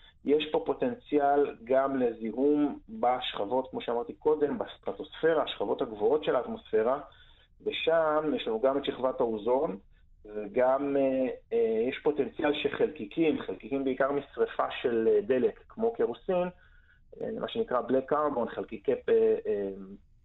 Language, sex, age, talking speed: Hebrew, male, 30-49, 120 wpm